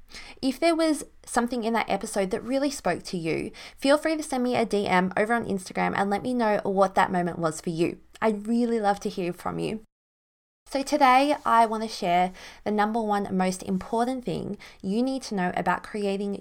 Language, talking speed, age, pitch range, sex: English, 210 wpm, 20-39, 185-240 Hz, female